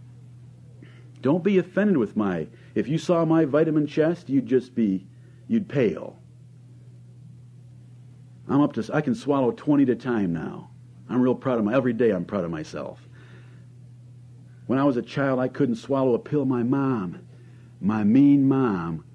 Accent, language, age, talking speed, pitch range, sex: American, English, 50-69, 165 wpm, 110-130 Hz, male